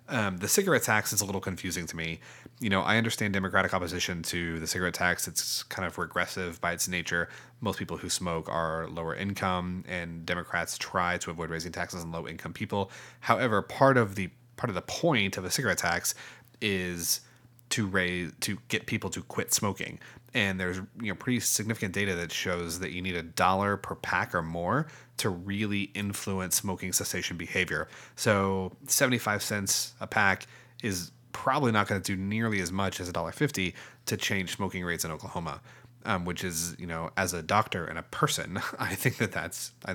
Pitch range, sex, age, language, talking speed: 85-110 Hz, male, 30-49, English, 195 wpm